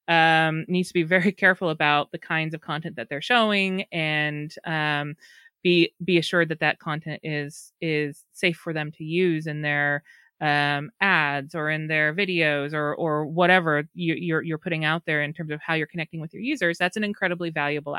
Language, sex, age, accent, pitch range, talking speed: English, female, 30-49, American, 150-180 Hz, 195 wpm